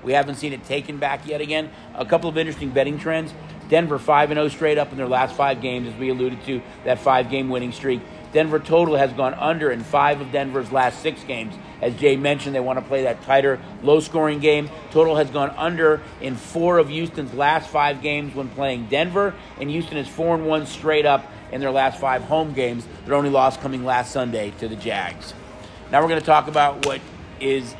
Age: 50-69